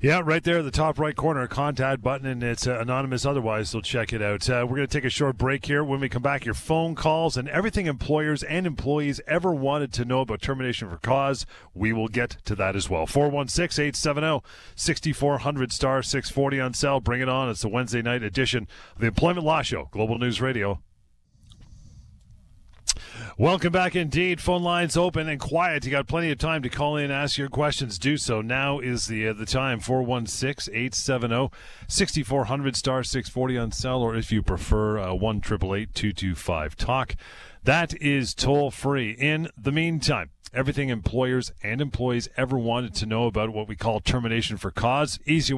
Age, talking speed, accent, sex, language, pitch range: 30-49, 180 wpm, American, male, English, 115-145 Hz